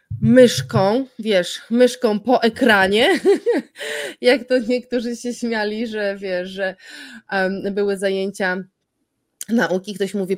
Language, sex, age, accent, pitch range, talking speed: Polish, female, 20-39, native, 195-235 Hz, 110 wpm